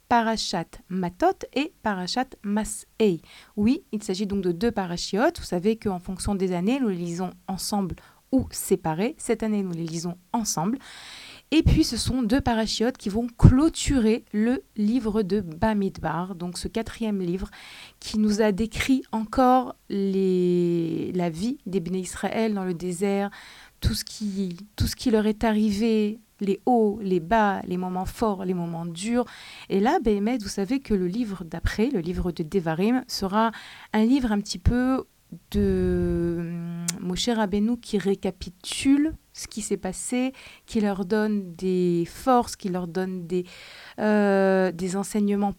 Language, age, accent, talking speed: French, 30-49, French, 160 wpm